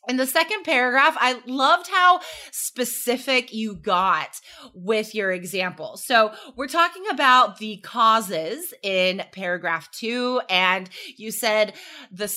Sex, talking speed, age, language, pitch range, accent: female, 125 wpm, 20-39, English, 225-335 Hz, American